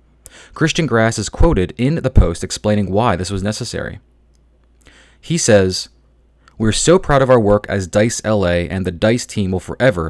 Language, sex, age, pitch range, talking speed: English, male, 30-49, 90-120 Hz, 170 wpm